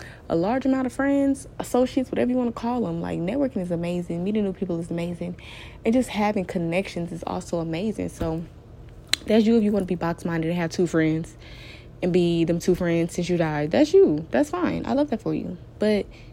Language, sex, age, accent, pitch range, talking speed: English, female, 20-39, American, 180-275 Hz, 220 wpm